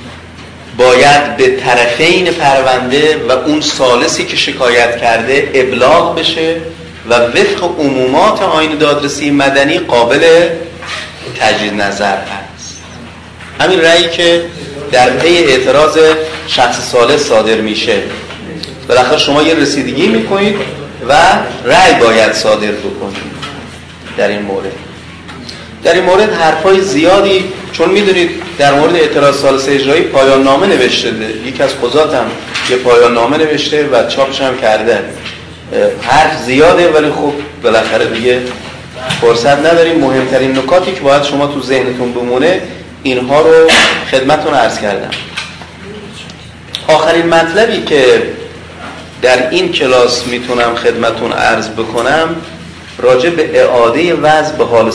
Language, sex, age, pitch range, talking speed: Persian, male, 30-49, 120-165 Hz, 115 wpm